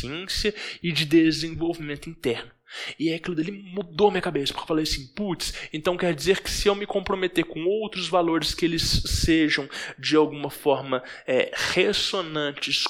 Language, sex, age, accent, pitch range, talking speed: English, male, 20-39, Brazilian, 135-175 Hz, 160 wpm